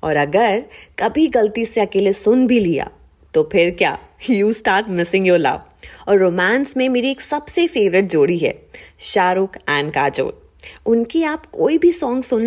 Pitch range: 175-260 Hz